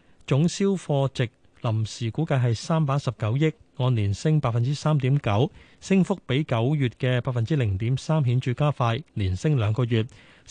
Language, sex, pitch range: Chinese, male, 115-145 Hz